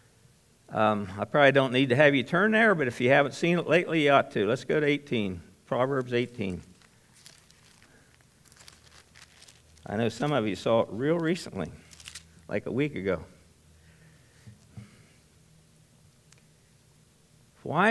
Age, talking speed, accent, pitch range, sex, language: 60-79, 135 wpm, American, 110-145 Hz, male, English